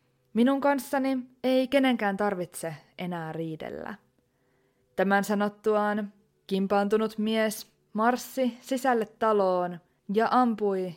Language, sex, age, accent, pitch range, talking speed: Finnish, female, 20-39, native, 185-225 Hz, 90 wpm